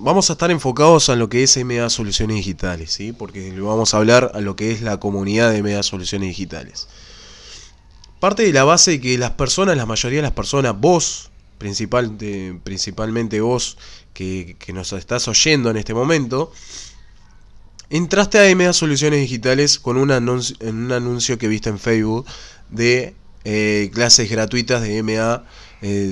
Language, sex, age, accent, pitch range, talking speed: Spanish, male, 20-39, Argentinian, 100-135 Hz, 170 wpm